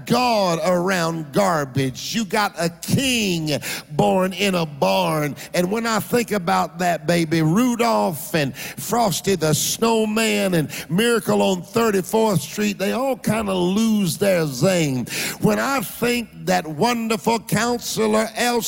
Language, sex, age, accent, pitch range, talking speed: English, male, 50-69, American, 170-215 Hz, 135 wpm